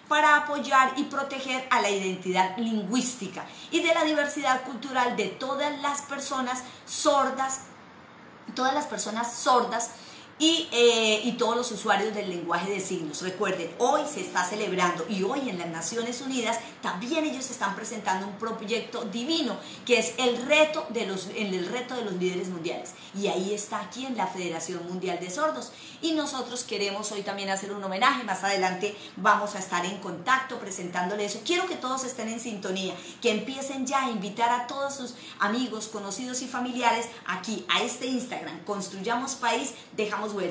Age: 30-49